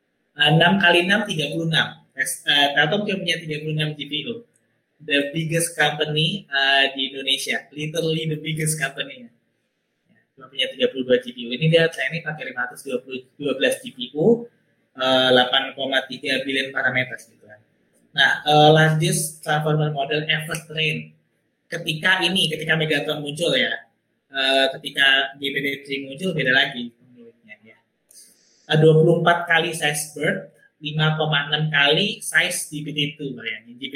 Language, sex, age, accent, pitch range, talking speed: Indonesian, male, 20-39, native, 130-165 Hz, 135 wpm